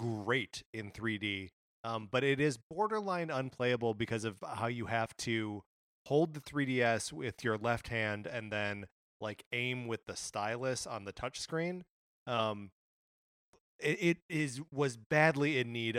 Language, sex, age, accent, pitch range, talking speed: English, male, 30-49, American, 105-130 Hz, 155 wpm